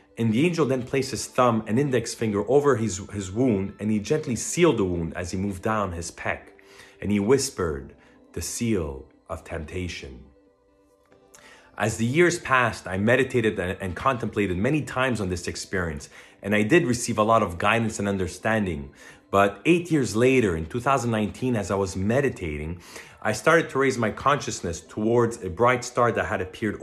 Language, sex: English, male